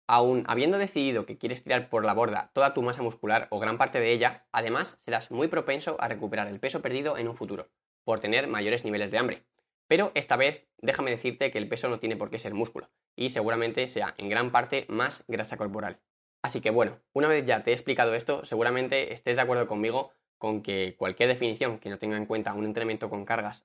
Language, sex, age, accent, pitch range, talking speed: Spanish, male, 20-39, Spanish, 110-135 Hz, 220 wpm